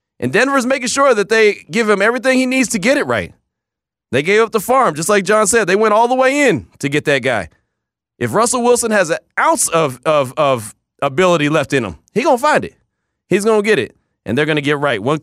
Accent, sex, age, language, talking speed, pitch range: American, male, 30-49, English, 250 wpm, 130-200 Hz